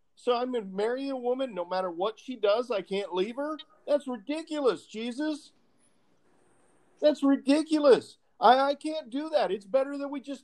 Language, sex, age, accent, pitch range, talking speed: English, male, 50-69, American, 185-265 Hz, 180 wpm